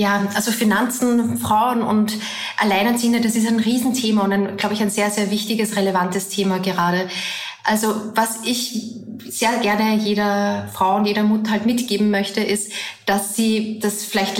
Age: 20-39